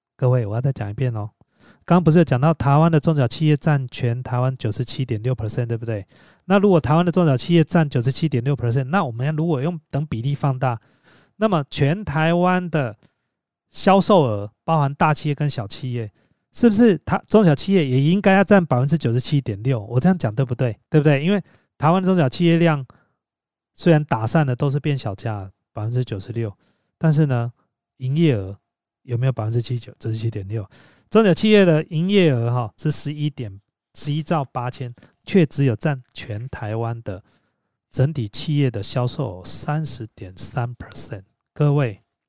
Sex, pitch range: male, 115-155 Hz